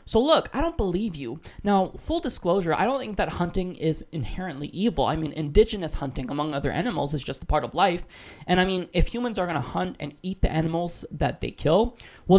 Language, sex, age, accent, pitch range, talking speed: English, male, 20-39, American, 150-195 Hz, 230 wpm